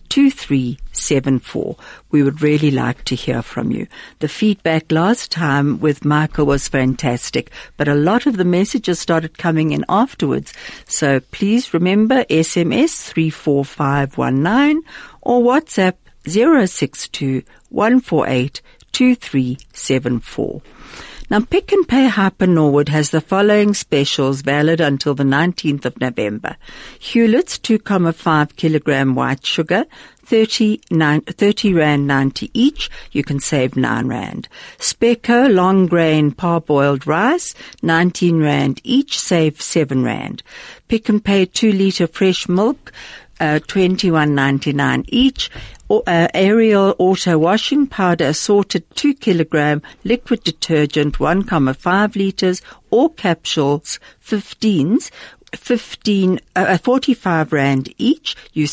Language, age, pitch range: English, 60-79, 145-210 Hz